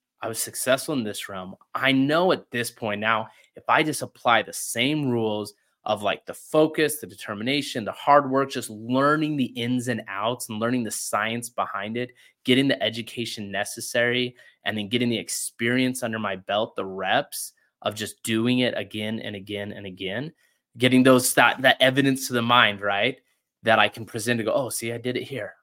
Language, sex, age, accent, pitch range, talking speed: English, male, 20-39, American, 110-135 Hz, 195 wpm